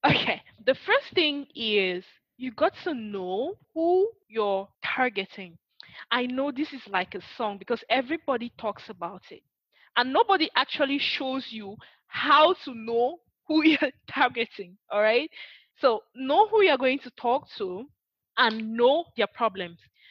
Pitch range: 210-285 Hz